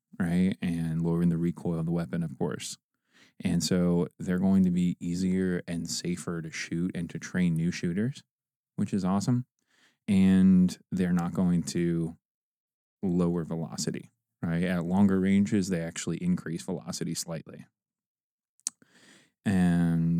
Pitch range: 85-110 Hz